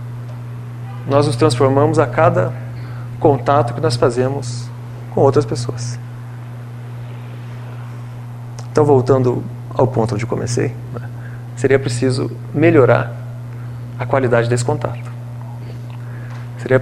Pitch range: 120-125 Hz